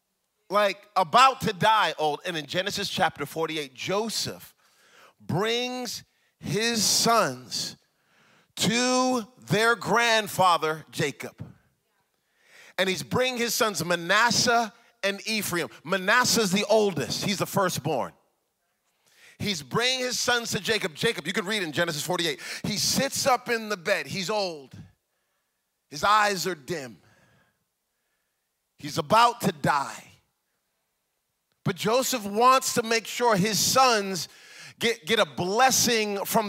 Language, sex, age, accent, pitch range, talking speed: English, male, 40-59, American, 135-210 Hz, 125 wpm